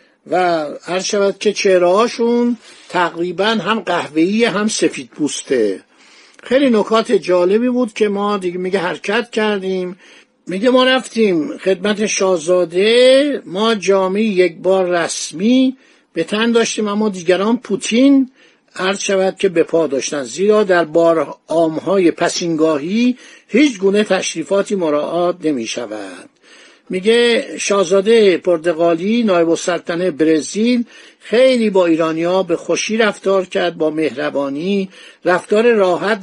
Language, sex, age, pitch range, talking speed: Persian, male, 60-79, 175-225 Hz, 115 wpm